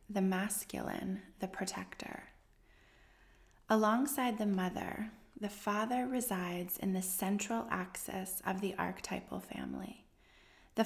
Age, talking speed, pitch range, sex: 20-39, 105 wpm, 190-230 Hz, female